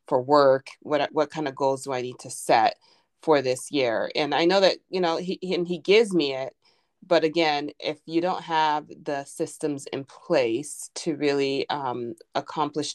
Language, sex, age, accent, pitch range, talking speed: English, female, 30-49, American, 140-165 Hz, 190 wpm